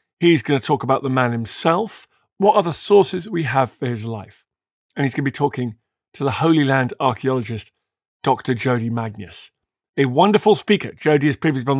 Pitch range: 125-165 Hz